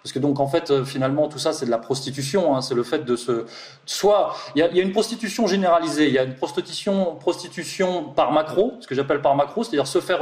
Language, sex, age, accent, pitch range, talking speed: French, male, 20-39, French, 130-170 Hz, 240 wpm